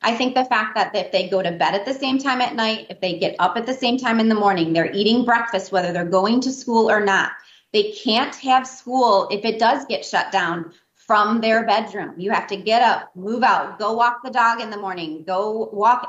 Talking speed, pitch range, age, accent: 245 wpm, 195-255 Hz, 30-49, American